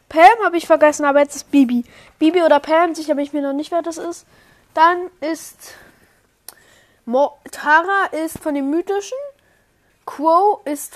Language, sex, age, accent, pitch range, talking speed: German, female, 20-39, German, 220-295 Hz, 165 wpm